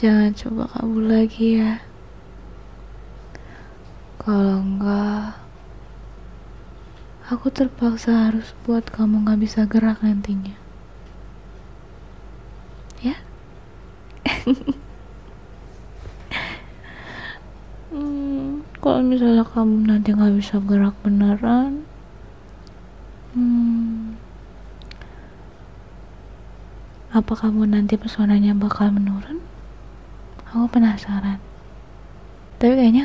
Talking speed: 65 wpm